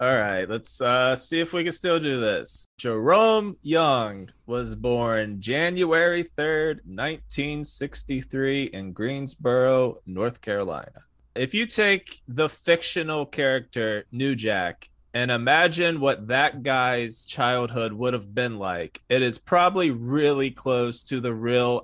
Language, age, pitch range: English, 20-39, 115-155 Hz